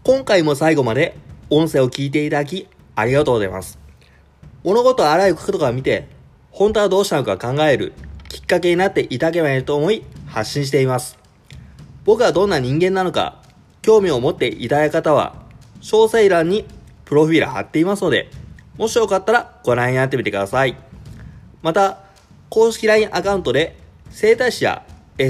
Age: 20-39